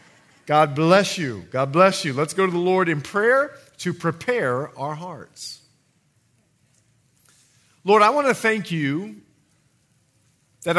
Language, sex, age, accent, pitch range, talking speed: English, male, 40-59, American, 125-185 Hz, 135 wpm